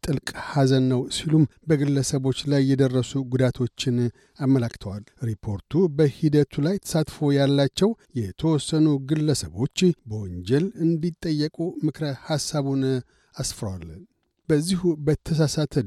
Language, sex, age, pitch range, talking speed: Amharic, male, 60-79, 135-165 Hz, 85 wpm